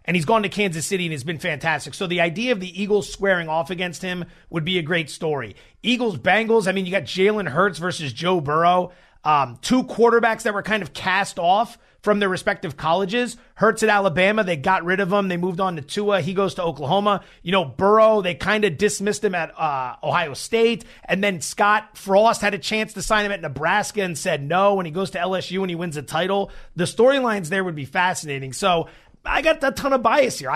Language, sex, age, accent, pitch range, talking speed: English, male, 30-49, American, 175-220 Hz, 230 wpm